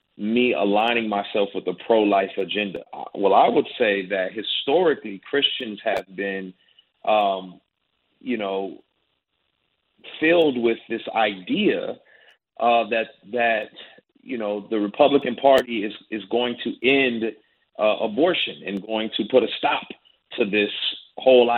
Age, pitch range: 40-59, 110-175 Hz